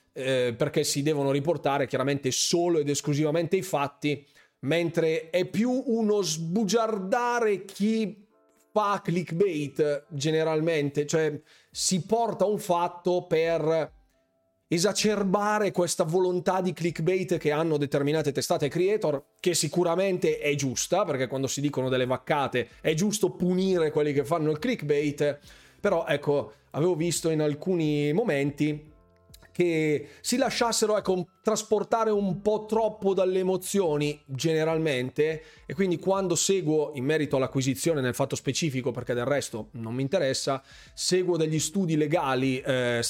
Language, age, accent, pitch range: Italian, 30-49, native, 140-180 Hz